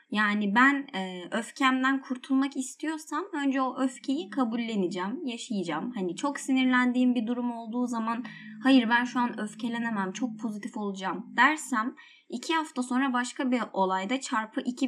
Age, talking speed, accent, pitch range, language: 20-39, 140 wpm, native, 195-260 Hz, Turkish